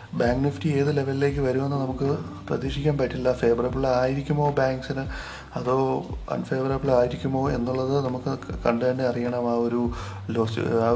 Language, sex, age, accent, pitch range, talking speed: Malayalam, male, 30-49, native, 120-140 Hz, 125 wpm